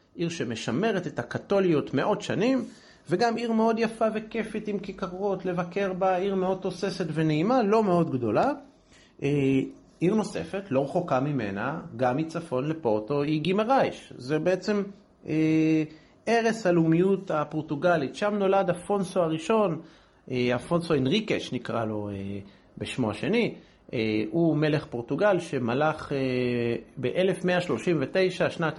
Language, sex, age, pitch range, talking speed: Hebrew, male, 40-59, 135-190 Hz, 115 wpm